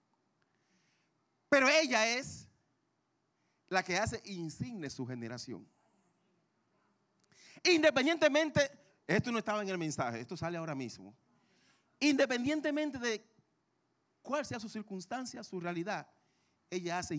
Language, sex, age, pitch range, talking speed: Spanish, male, 40-59, 170-265 Hz, 105 wpm